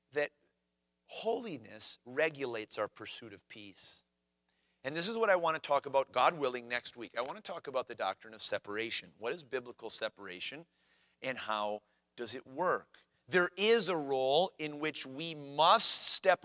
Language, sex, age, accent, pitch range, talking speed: English, male, 40-59, American, 115-170 Hz, 170 wpm